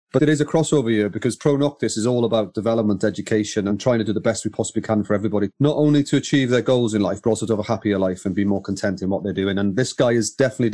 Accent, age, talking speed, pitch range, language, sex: British, 30-49, 295 wpm, 110-145 Hz, English, male